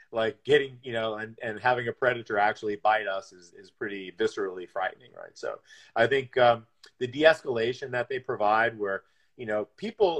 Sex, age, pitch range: male, 40-59, 105-145 Hz